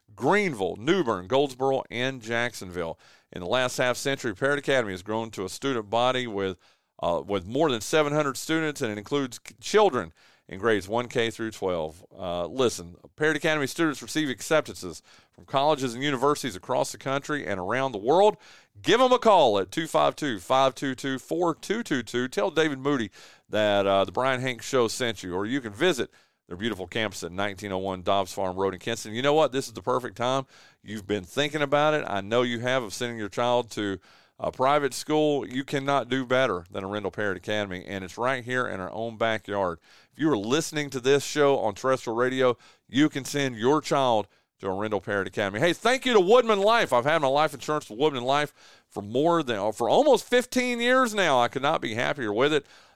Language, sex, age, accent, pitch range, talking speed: English, male, 40-59, American, 110-145 Hz, 195 wpm